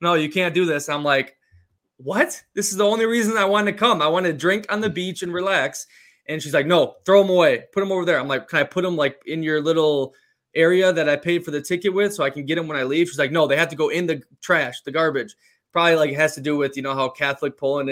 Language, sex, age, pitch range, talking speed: English, male, 20-39, 145-185 Hz, 290 wpm